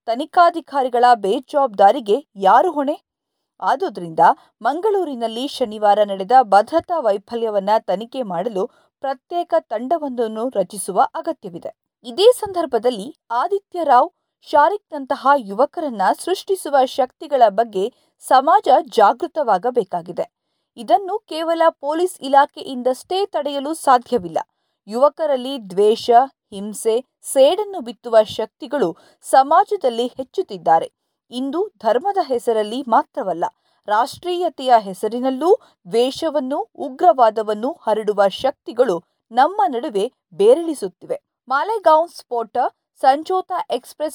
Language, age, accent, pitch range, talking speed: Kannada, 50-69, native, 230-335 Hz, 75 wpm